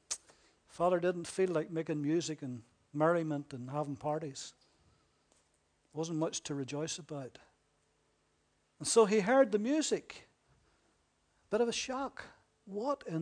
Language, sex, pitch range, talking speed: English, male, 160-260 Hz, 125 wpm